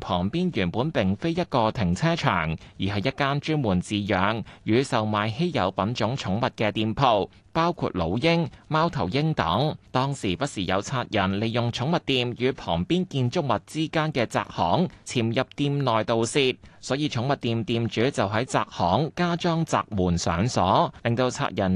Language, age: Chinese, 20-39